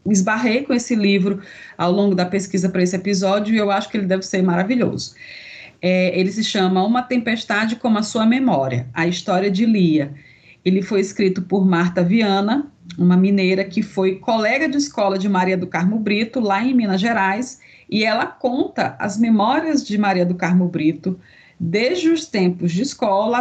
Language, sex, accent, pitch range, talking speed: Portuguese, female, Brazilian, 180-225 Hz, 175 wpm